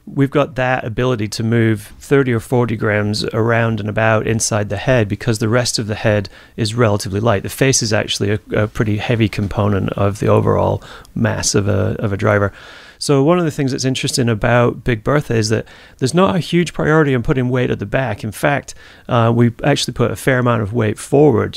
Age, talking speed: 30-49, 215 wpm